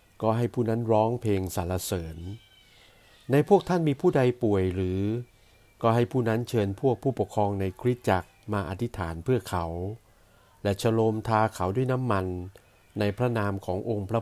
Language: Thai